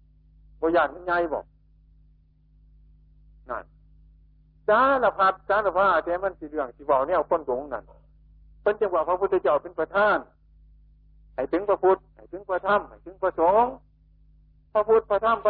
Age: 60-79